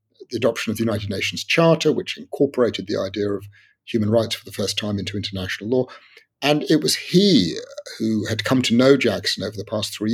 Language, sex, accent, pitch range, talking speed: English, male, British, 105-135 Hz, 205 wpm